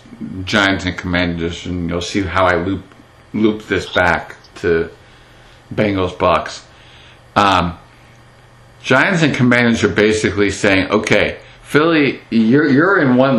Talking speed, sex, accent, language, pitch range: 125 wpm, male, American, English, 100-130 Hz